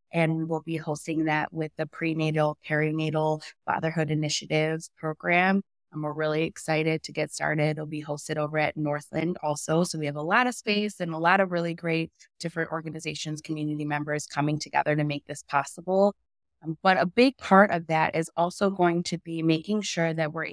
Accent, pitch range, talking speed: American, 150-180 Hz, 185 wpm